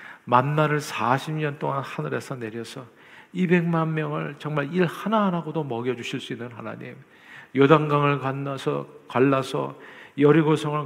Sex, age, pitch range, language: male, 50-69, 130-160 Hz, Korean